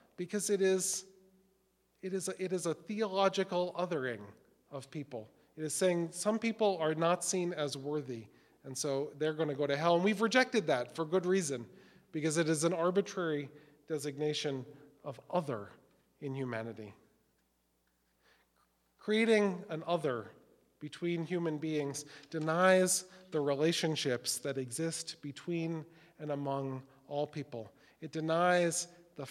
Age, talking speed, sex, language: 40-59, 135 wpm, male, English